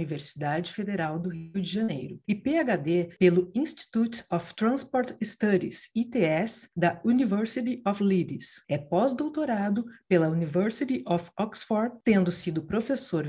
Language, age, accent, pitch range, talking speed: Portuguese, 50-69, Brazilian, 170-230 Hz, 120 wpm